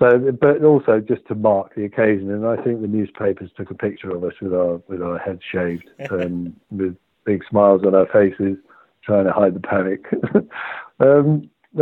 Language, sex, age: English, male, 60-79